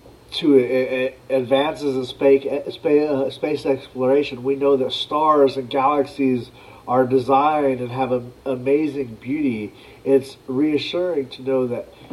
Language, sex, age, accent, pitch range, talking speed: English, male, 40-59, American, 125-145 Hz, 115 wpm